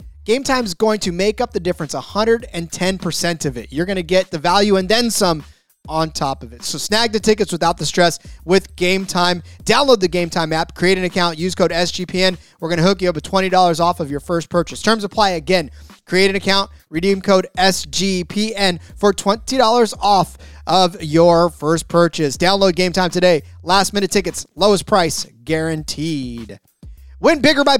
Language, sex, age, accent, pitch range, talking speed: English, male, 30-49, American, 160-200 Hz, 190 wpm